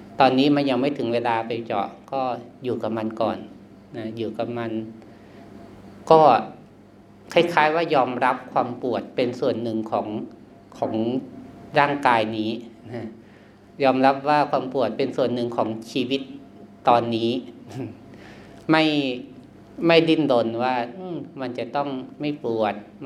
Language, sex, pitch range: Thai, male, 105-135 Hz